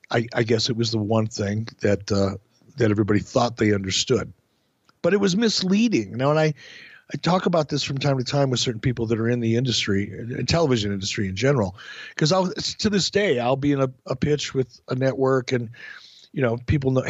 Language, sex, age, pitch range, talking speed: English, male, 50-69, 120-155 Hz, 225 wpm